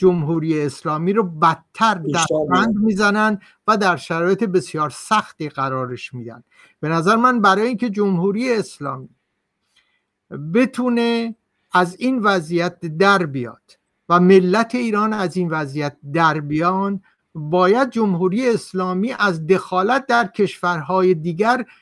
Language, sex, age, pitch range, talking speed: Persian, male, 60-79, 175-215 Hz, 115 wpm